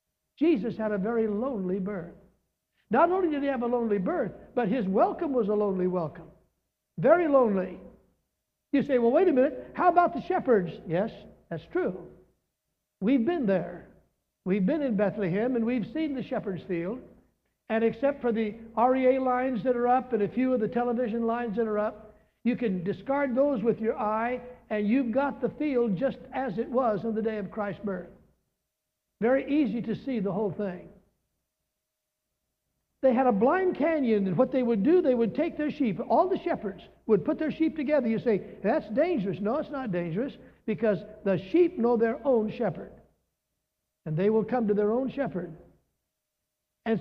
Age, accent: 60-79, American